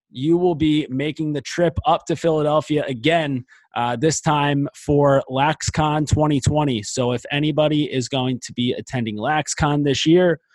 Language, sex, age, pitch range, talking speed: English, male, 20-39, 120-150 Hz, 155 wpm